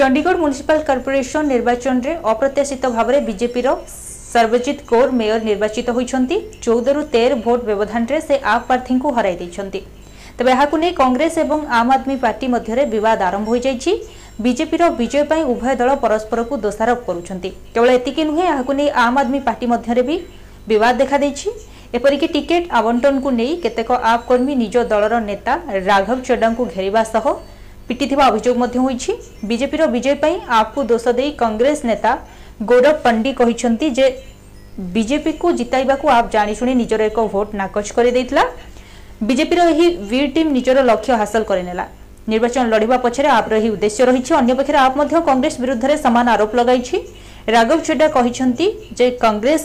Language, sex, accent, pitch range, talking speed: Hindi, female, native, 230-285 Hz, 105 wpm